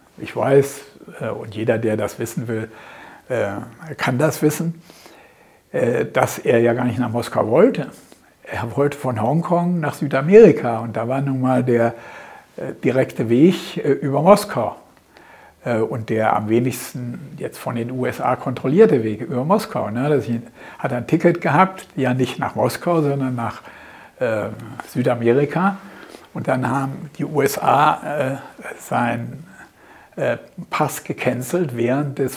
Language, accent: English, German